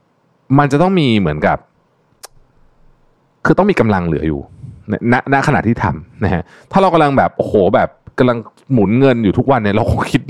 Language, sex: Thai, male